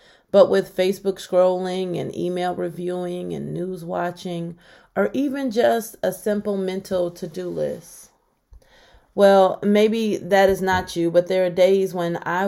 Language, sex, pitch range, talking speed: English, female, 180-220 Hz, 145 wpm